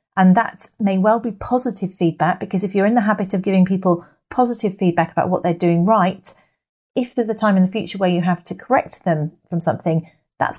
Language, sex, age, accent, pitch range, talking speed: English, female, 40-59, British, 175-210 Hz, 220 wpm